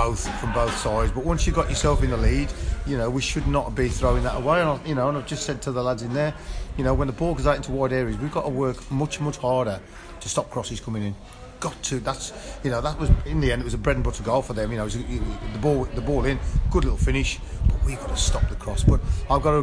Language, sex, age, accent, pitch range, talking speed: English, male, 30-49, British, 115-135 Hz, 290 wpm